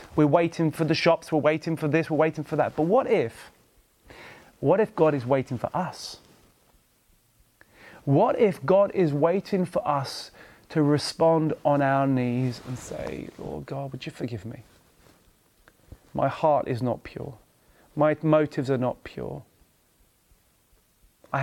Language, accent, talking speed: English, British, 150 wpm